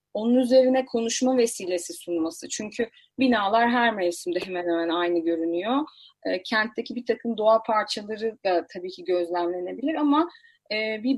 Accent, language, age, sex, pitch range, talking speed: native, Turkish, 30-49, female, 195-250 Hz, 130 wpm